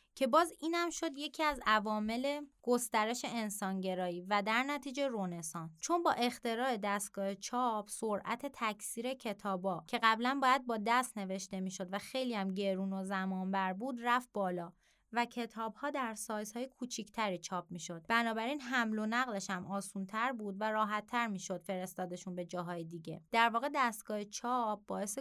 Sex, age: female, 30-49